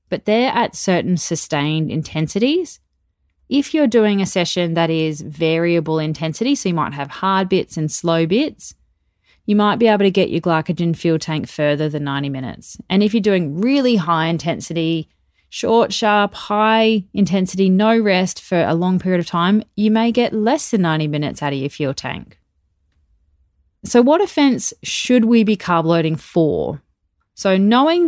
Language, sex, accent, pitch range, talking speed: English, female, Australian, 160-215 Hz, 170 wpm